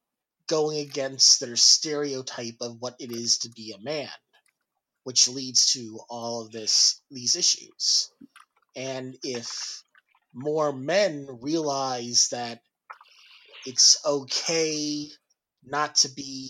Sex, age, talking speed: male, 30-49, 115 wpm